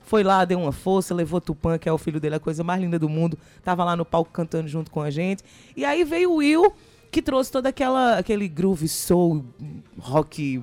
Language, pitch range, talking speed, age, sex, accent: Portuguese, 165-200 Hz, 220 wpm, 20-39, female, Brazilian